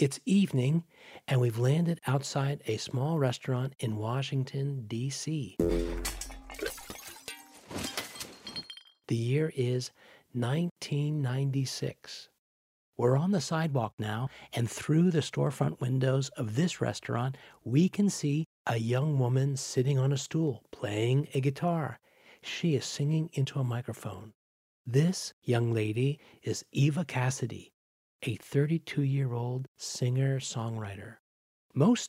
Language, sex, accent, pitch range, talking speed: English, male, American, 115-145 Hz, 110 wpm